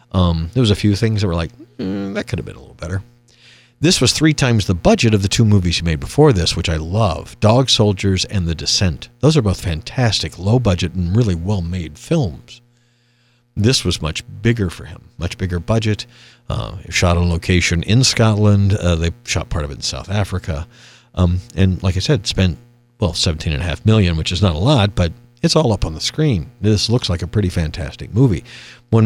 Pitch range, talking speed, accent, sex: 90-120 Hz, 215 wpm, American, male